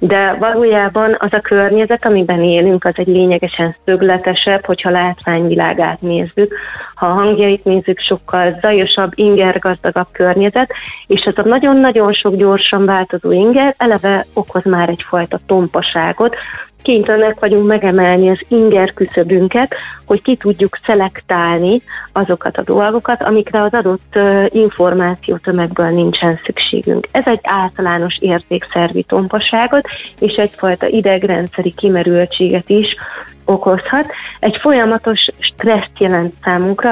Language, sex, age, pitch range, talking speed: Hungarian, female, 30-49, 180-220 Hz, 115 wpm